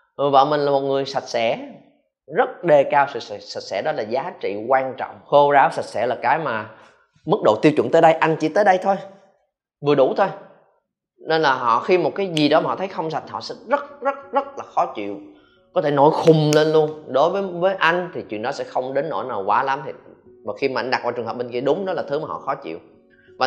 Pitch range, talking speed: 125-190 Hz, 260 wpm